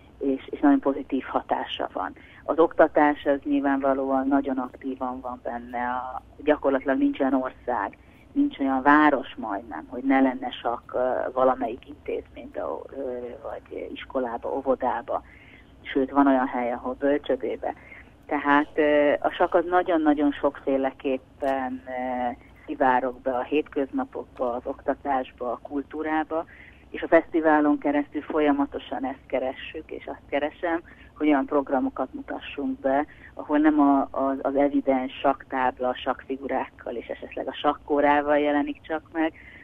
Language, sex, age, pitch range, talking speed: Hungarian, female, 30-49, 130-150 Hz, 130 wpm